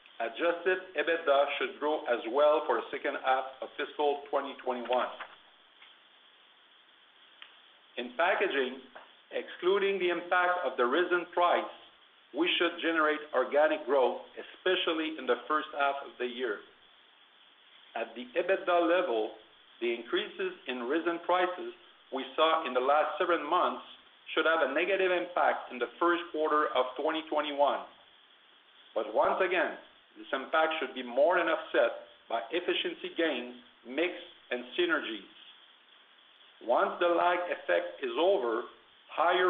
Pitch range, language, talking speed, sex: 145-180 Hz, English, 130 wpm, male